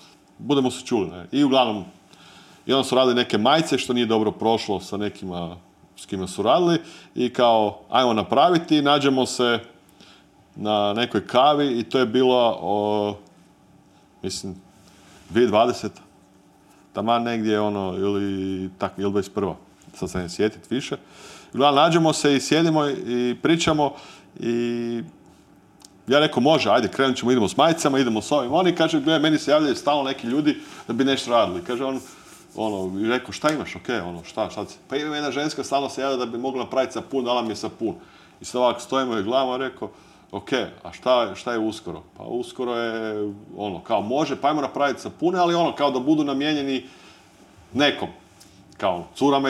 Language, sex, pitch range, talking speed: English, male, 105-140 Hz, 170 wpm